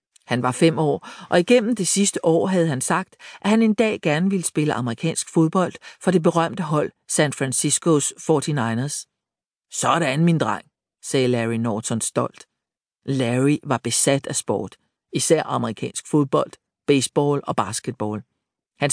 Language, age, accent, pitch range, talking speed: Danish, 50-69, native, 125-165 Hz, 150 wpm